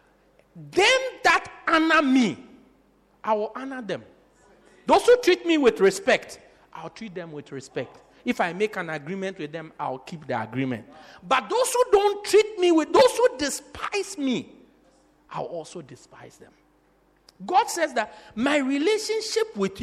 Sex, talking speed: male, 155 wpm